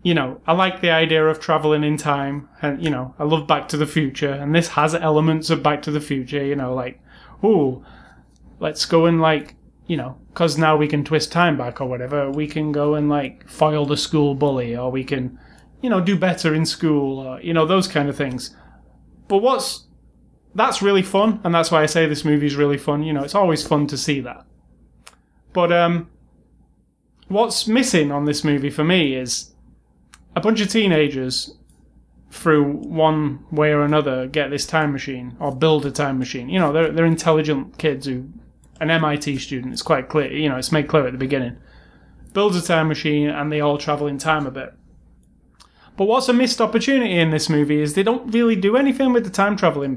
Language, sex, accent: English, male, British